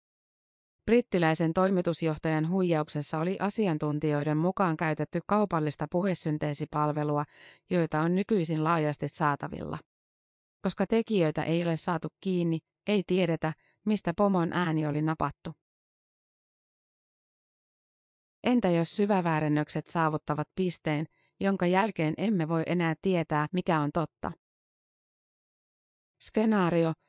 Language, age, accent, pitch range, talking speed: Finnish, 30-49, native, 155-185 Hz, 95 wpm